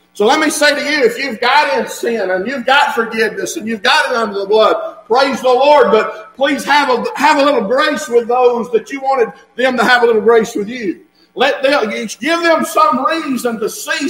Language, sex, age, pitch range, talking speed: English, male, 50-69, 200-295 Hz, 230 wpm